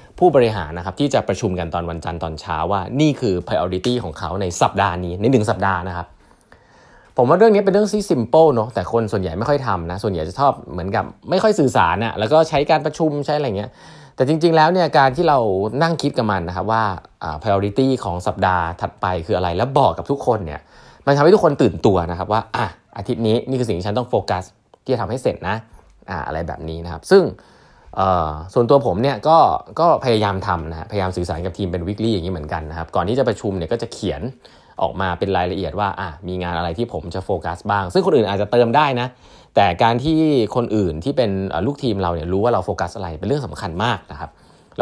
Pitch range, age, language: 90-125 Hz, 20-39, Thai